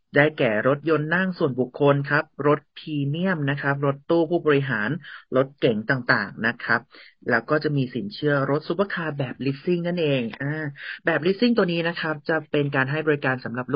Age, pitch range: 30-49, 125-150 Hz